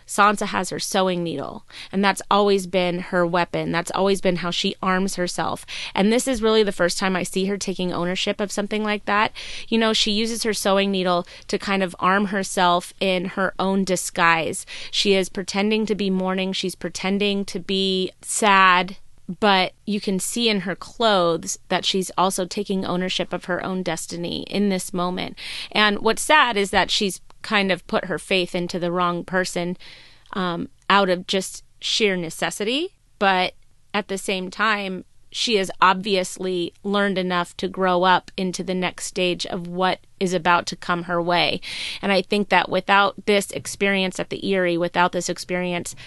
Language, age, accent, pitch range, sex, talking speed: English, 30-49, American, 175-200 Hz, female, 180 wpm